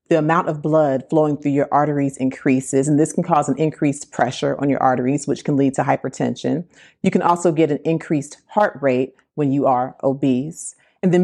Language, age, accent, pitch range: English, 40-59, American, 135-165 Hz